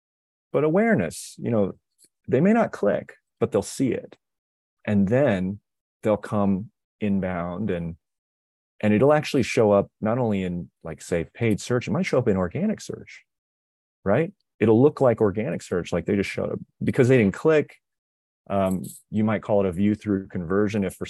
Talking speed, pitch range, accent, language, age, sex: 180 wpm, 90-110 Hz, American, English, 30-49, male